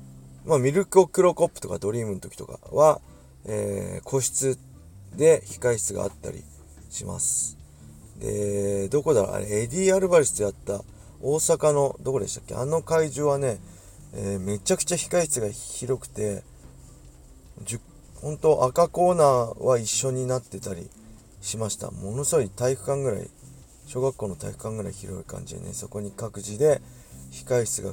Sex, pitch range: male, 100-140 Hz